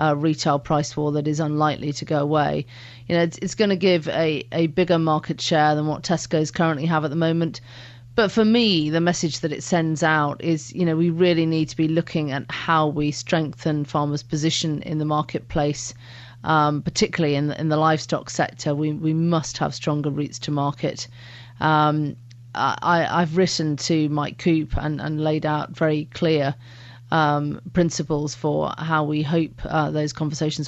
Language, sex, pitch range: English, female, 145-165 Hz